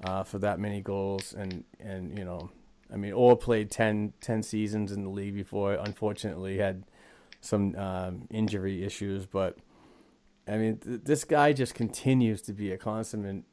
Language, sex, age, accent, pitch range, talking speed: English, male, 30-49, American, 95-110 Hz, 165 wpm